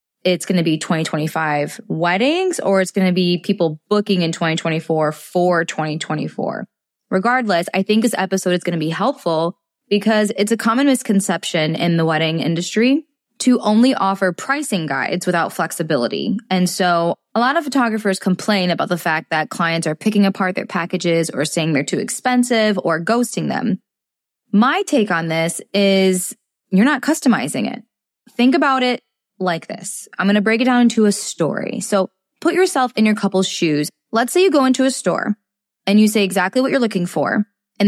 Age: 10-29